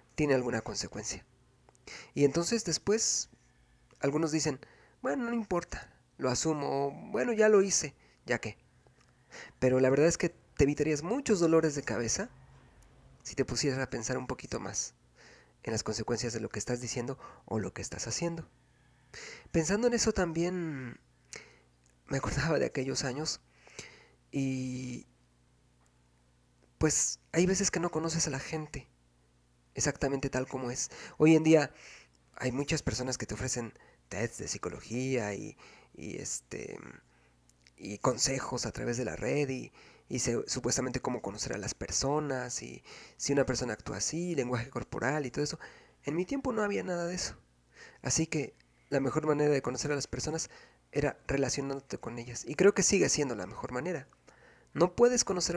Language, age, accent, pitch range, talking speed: Spanish, 40-59, Mexican, 110-160 Hz, 160 wpm